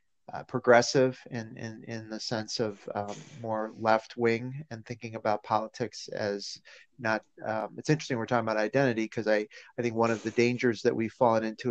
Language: English